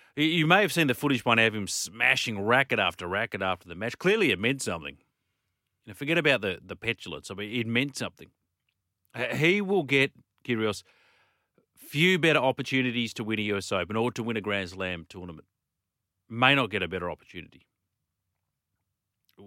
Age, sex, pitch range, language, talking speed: 40-59, male, 95-130 Hz, English, 175 wpm